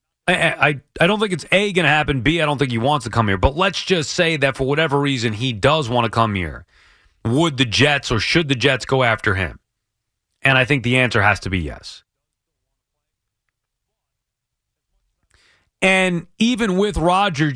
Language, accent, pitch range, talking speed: English, American, 115-150 Hz, 190 wpm